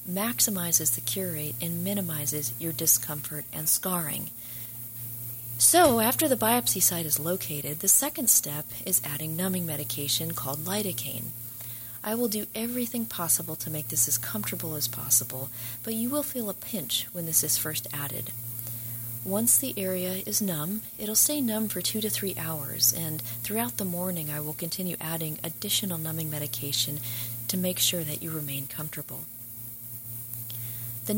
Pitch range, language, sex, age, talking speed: 120-190 Hz, English, female, 40-59, 155 wpm